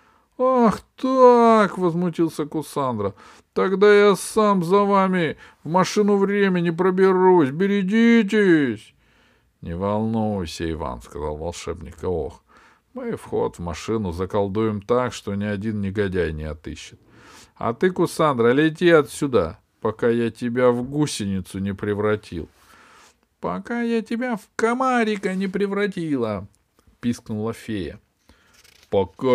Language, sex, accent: Russian, male, native